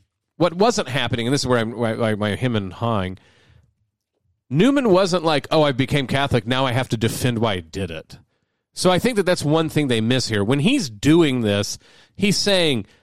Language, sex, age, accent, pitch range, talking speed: English, male, 40-59, American, 110-145 Hz, 200 wpm